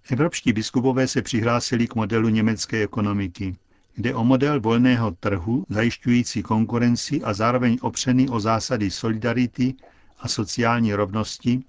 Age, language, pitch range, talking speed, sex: 60-79, Czech, 100-125 Hz, 125 wpm, male